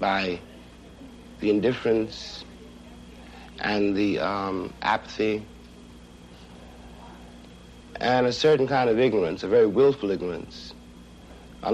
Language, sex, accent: English, male, American